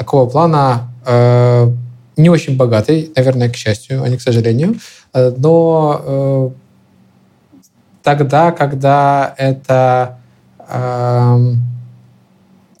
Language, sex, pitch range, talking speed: Ukrainian, male, 125-150 Hz, 95 wpm